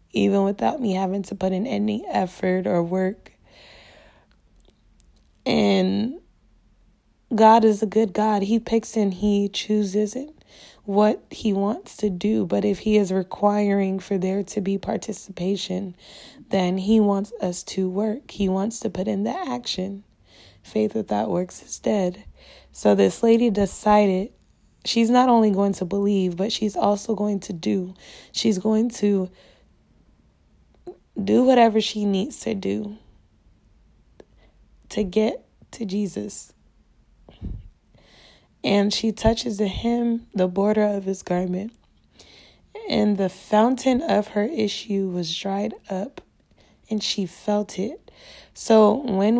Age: 20-39